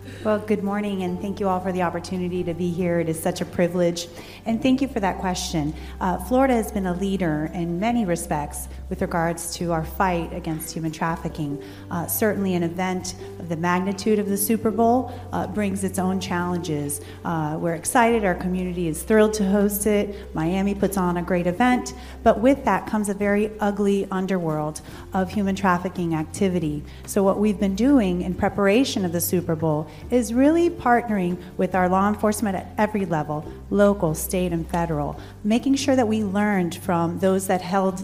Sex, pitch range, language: female, 170-210 Hz, English